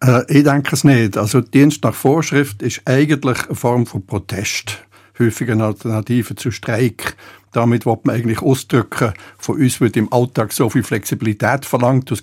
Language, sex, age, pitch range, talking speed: German, male, 60-79, 110-140 Hz, 160 wpm